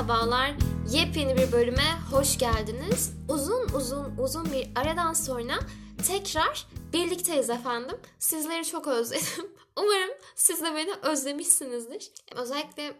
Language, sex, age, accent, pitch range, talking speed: Turkish, female, 10-29, native, 240-350 Hz, 110 wpm